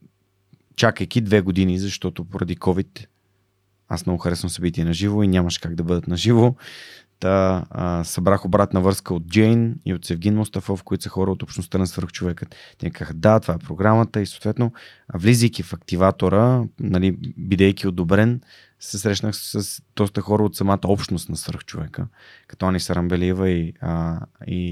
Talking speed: 155 wpm